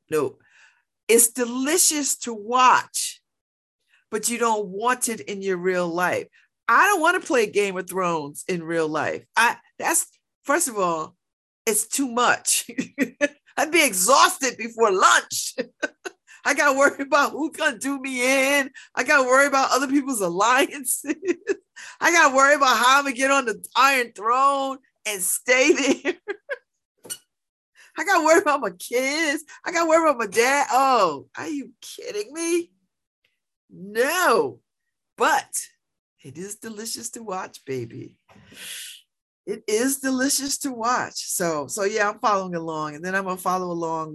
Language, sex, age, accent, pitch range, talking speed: English, female, 40-59, American, 180-290 Hz, 150 wpm